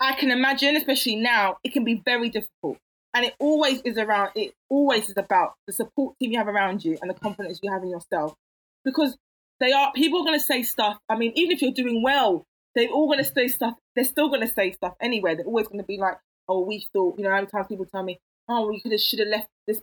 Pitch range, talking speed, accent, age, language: 195-255 Hz, 265 wpm, British, 20-39, English